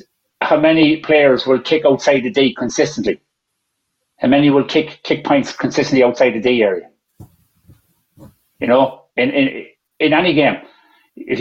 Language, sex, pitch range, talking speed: English, male, 135-190 Hz, 145 wpm